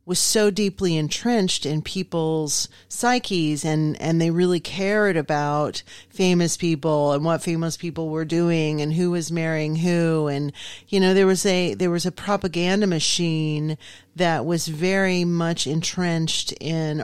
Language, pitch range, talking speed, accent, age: English, 155-185 Hz, 150 wpm, American, 40-59